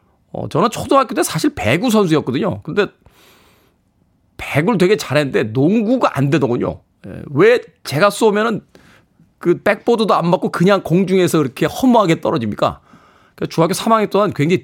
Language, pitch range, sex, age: Korean, 105-160 Hz, male, 40-59